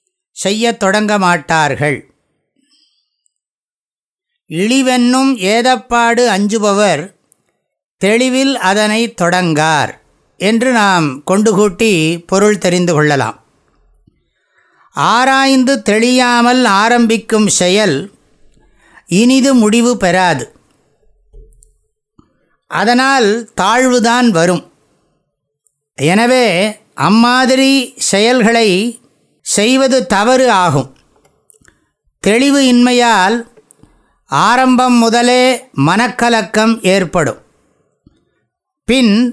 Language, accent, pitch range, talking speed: English, Indian, 190-250 Hz, 55 wpm